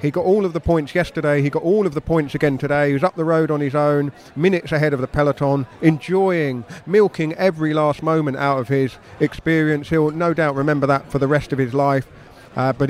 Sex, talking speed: male, 235 wpm